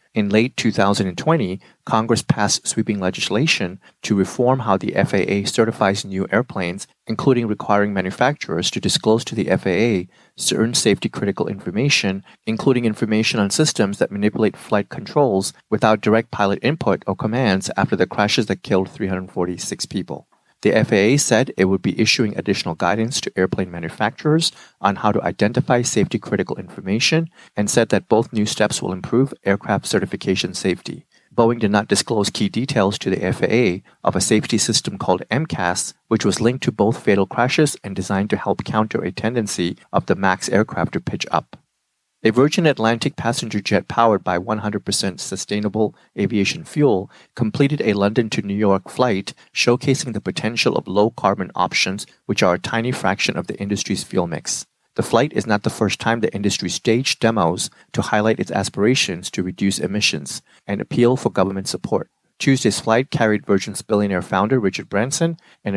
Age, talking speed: 30-49, 165 wpm